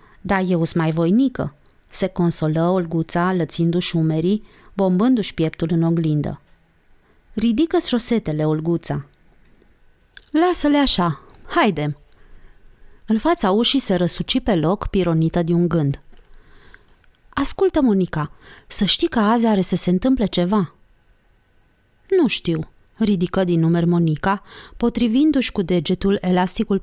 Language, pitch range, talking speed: Romanian, 160-230 Hz, 115 wpm